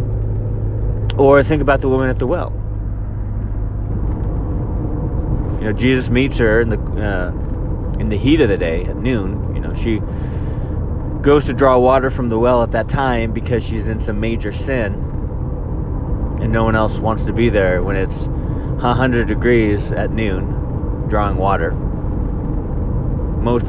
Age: 30-49